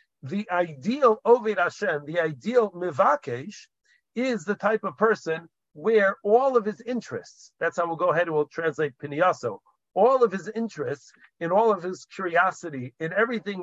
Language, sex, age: English, male, 50-69